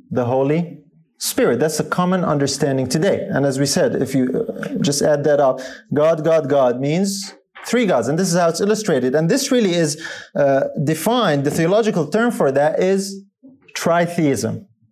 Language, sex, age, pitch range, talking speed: English, male, 30-49, 150-200 Hz, 175 wpm